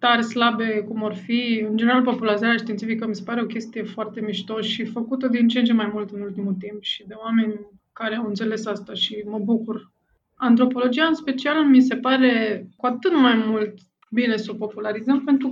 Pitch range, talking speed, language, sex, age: 215-250 Hz, 200 wpm, Romanian, female, 20-39